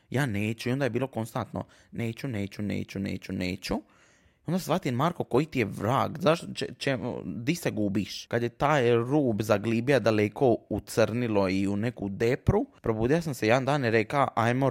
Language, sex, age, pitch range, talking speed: Croatian, male, 20-39, 105-135 Hz, 185 wpm